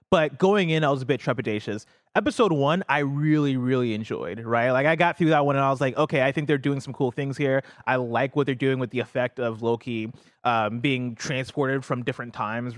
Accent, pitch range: American, 120-150 Hz